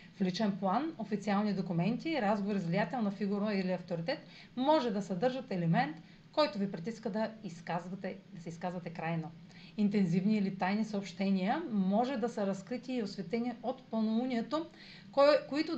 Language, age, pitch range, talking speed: Bulgarian, 40-59, 180-235 Hz, 135 wpm